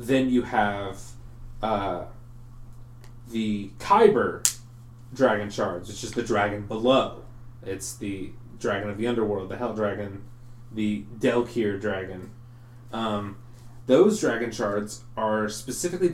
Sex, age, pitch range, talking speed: male, 30-49, 105-120 Hz, 115 wpm